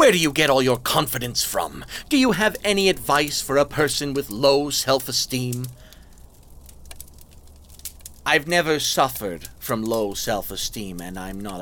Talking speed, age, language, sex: 145 wpm, 40-59, English, male